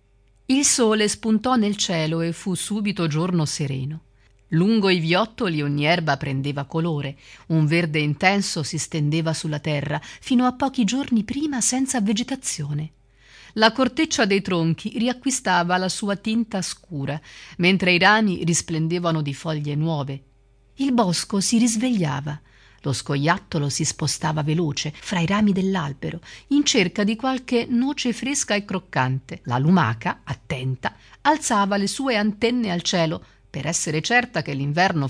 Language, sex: Italian, female